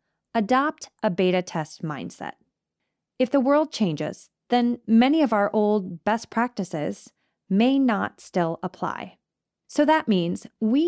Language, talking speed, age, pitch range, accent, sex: English, 130 wpm, 20-39, 185-255 Hz, American, female